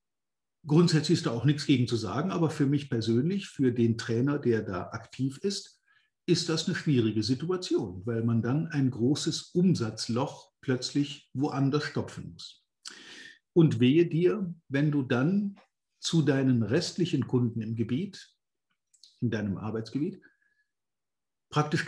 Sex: male